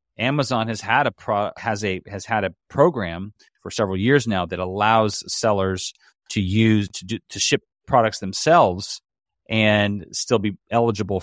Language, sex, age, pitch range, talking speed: English, male, 30-49, 100-125 Hz, 160 wpm